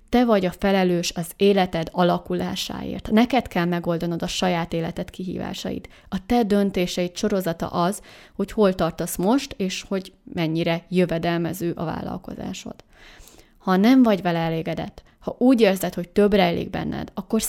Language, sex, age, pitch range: Hungarian, female, 20-39, 175-210 Hz